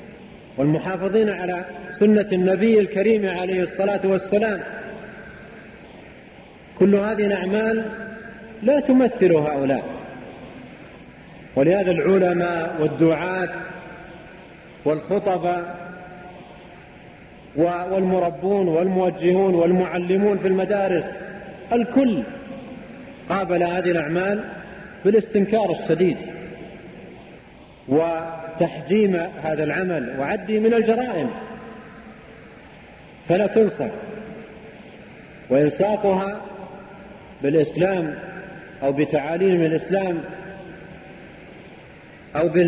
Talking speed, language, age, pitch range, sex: 60 wpm, Arabic, 40-59, 170-205 Hz, male